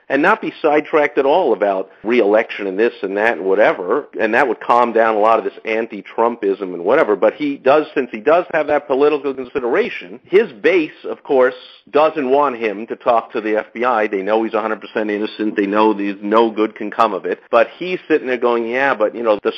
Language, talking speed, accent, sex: English, 220 wpm, American, male